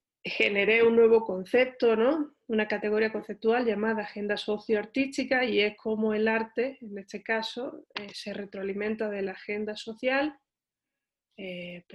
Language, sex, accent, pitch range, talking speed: Spanish, female, Spanish, 190-220 Hz, 130 wpm